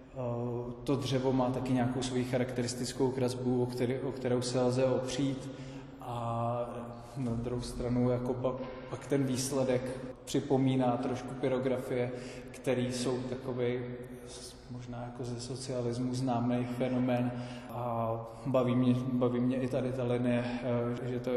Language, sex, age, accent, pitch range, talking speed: Czech, male, 20-39, native, 120-125 Hz, 125 wpm